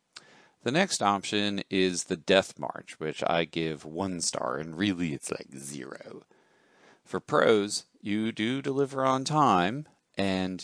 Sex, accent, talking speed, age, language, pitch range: male, American, 140 wpm, 40-59, English, 85-120 Hz